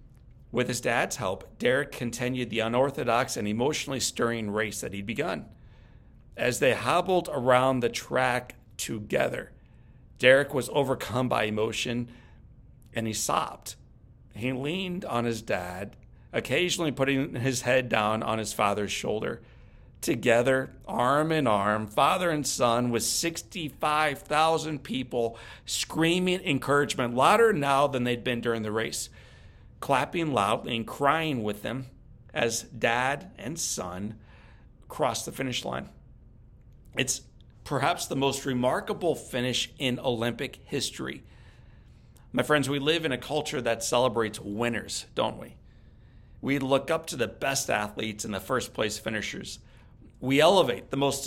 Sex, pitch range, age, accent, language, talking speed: male, 115-140 Hz, 40-59, American, English, 135 wpm